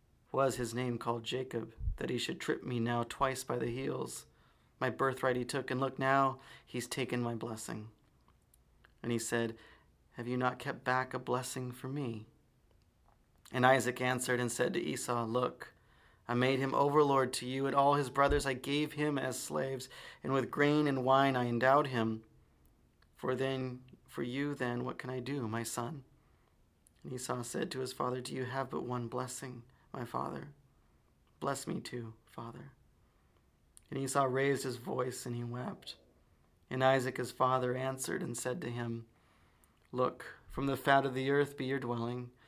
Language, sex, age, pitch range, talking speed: English, male, 30-49, 120-135 Hz, 175 wpm